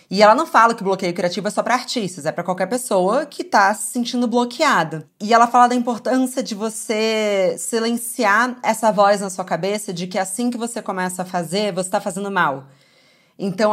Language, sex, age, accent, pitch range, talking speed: Portuguese, female, 20-39, Brazilian, 190-255 Hz, 200 wpm